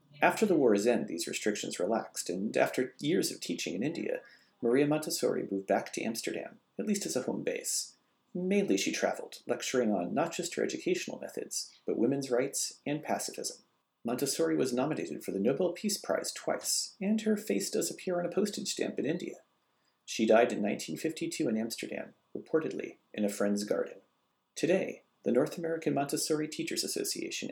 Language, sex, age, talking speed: English, male, 40-59, 170 wpm